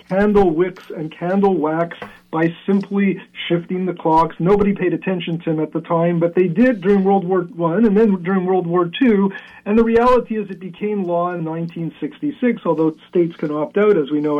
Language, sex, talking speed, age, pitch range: English, male, 200 wpm, 40-59, 170-205 Hz